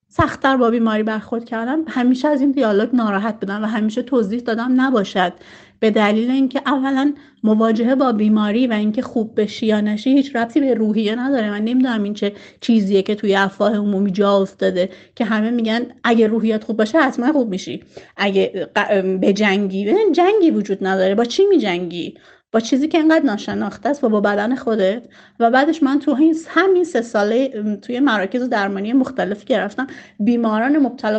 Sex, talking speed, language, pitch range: female, 175 wpm, Persian, 210-280 Hz